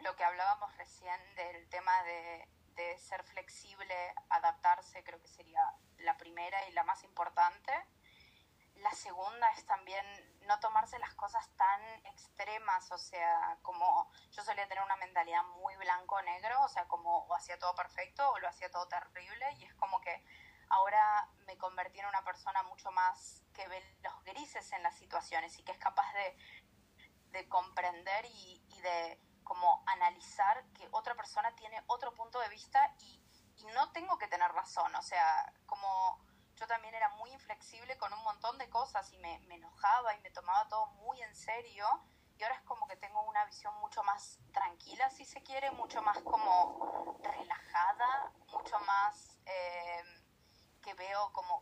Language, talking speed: Spanish, 170 wpm